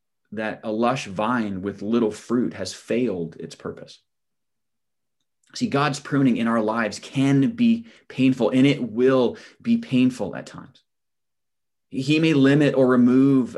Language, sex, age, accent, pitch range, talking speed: English, male, 30-49, American, 105-130 Hz, 140 wpm